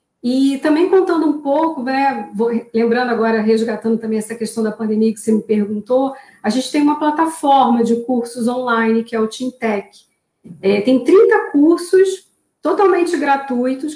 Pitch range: 235-300 Hz